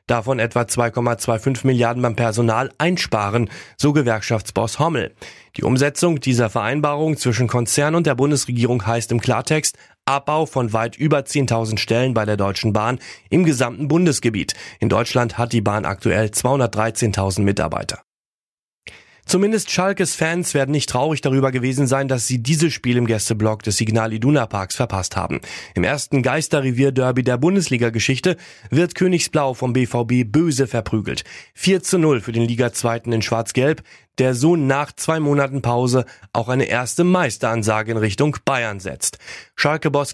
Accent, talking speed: German, 145 wpm